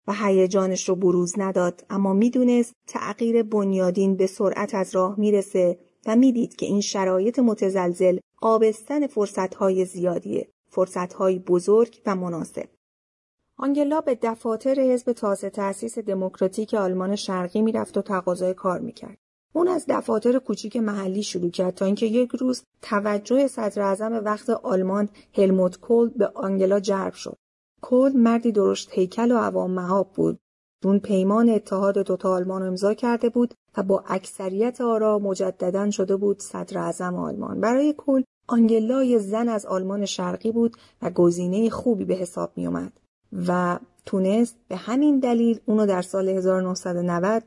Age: 30-49